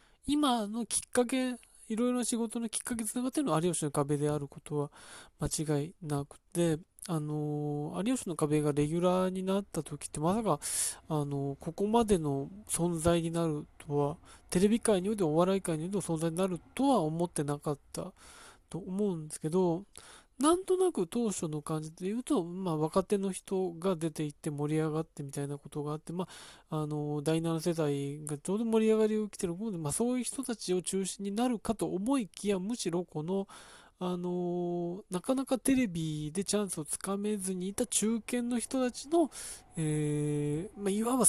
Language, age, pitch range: Japanese, 20-39, 155-220 Hz